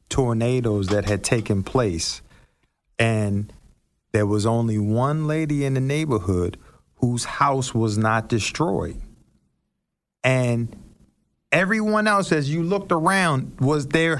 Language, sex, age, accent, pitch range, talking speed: English, male, 50-69, American, 115-155 Hz, 120 wpm